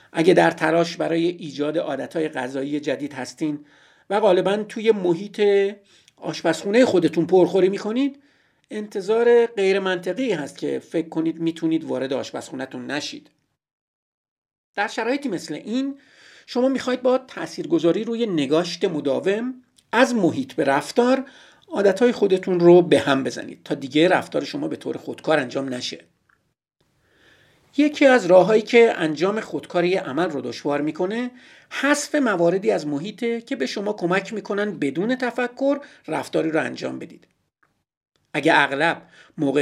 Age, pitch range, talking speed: 50-69, 155-235 Hz, 130 wpm